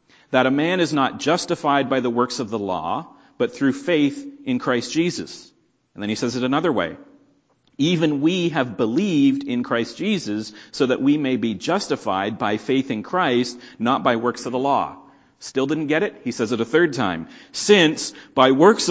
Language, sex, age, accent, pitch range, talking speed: English, male, 40-59, American, 120-170 Hz, 195 wpm